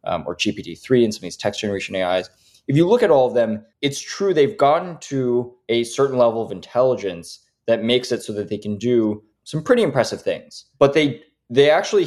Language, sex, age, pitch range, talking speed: English, male, 20-39, 105-135 Hz, 220 wpm